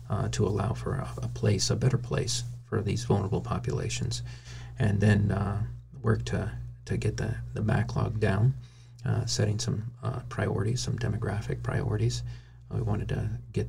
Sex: male